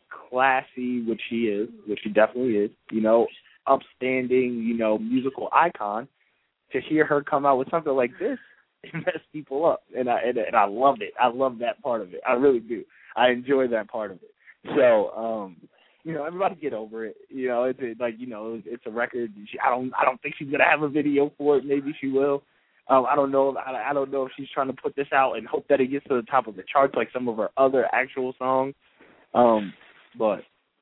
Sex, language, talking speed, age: male, English, 230 wpm, 20-39